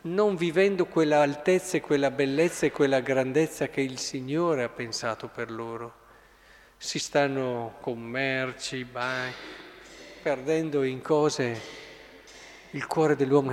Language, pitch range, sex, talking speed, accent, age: Italian, 125-165 Hz, male, 120 wpm, native, 50-69